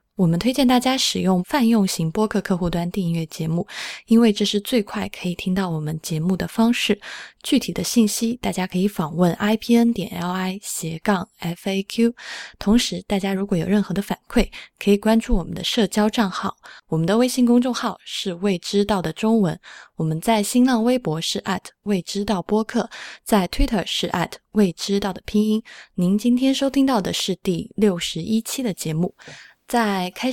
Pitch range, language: 175-225 Hz, Chinese